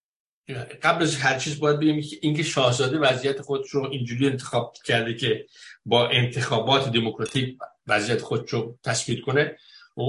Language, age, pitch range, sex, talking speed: Persian, 60-79, 120-145 Hz, male, 150 wpm